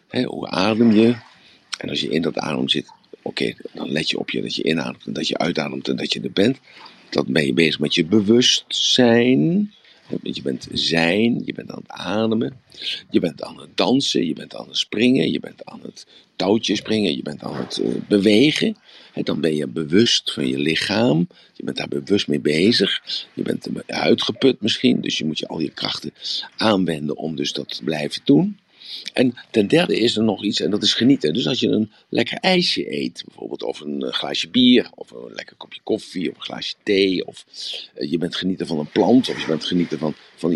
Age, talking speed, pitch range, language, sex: 50-69, 210 wpm, 85-120 Hz, Dutch, male